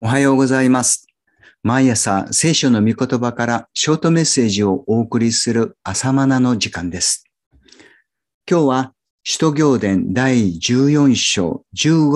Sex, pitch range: male, 95-140 Hz